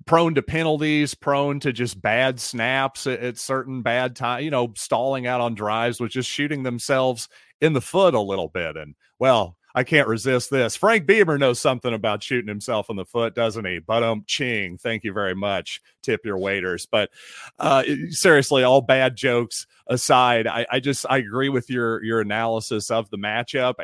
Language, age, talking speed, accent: English, 40-59, 195 wpm, American